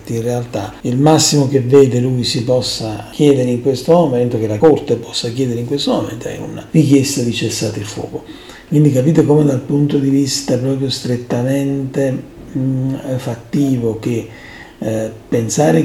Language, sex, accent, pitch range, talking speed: Italian, male, native, 110-140 Hz, 160 wpm